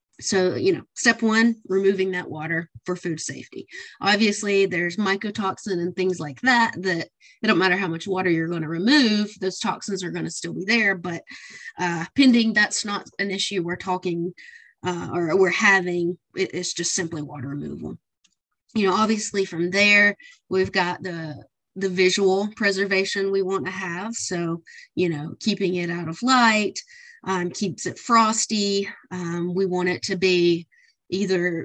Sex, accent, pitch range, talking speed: female, American, 175-220 Hz, 170 wpm